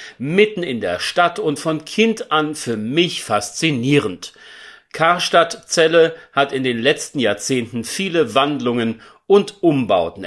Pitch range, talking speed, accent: 120-170 Hz, 125 wpm, German